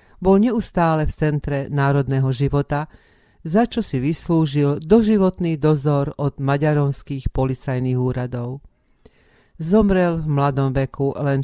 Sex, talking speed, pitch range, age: female, 110 wpm, 135-165 Hz, 40-59